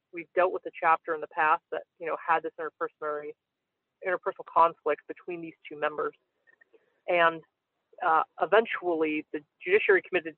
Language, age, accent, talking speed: English, 30-49, American, 150 wpm